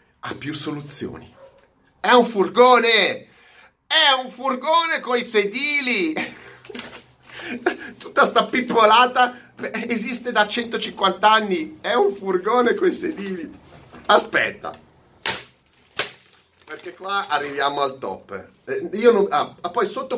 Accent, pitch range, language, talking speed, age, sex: native, 155-230 Hz, Italian, 110 wpm, 30-49, male